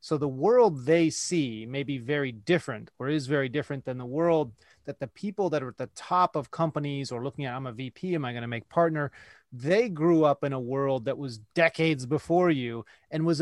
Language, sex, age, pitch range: English, male, 30-49, 130-160 Hz